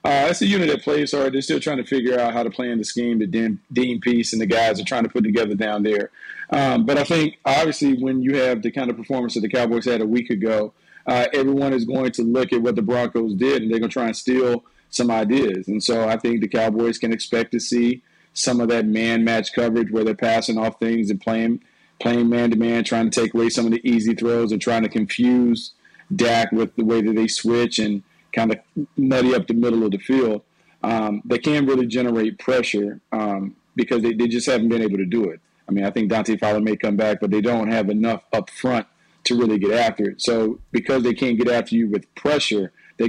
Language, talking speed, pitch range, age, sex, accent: English, 240 wpm, 110-120 Hz, 40-59, male, American